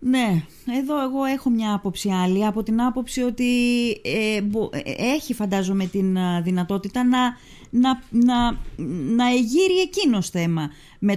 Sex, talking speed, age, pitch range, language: female, 115 wpm, 20-39, 175-230 Hz, Greek